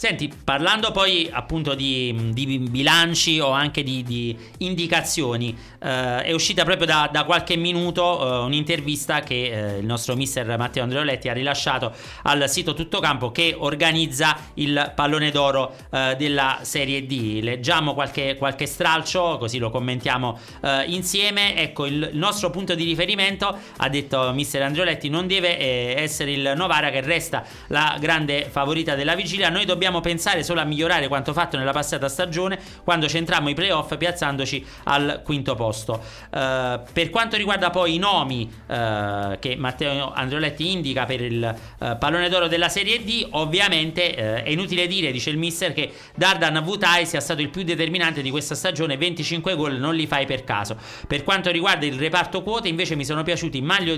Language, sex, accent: Italian, male, native